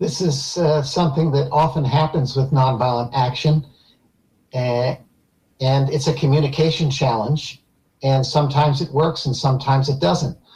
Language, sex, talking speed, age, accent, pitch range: English, male, 135 wpm, 50-69, American, 135-160 Hz